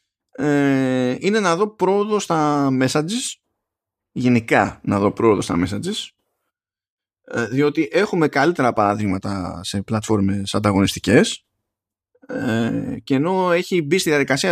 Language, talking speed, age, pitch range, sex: Greek, 110 wpm, 20-39, 110-160 Hz, male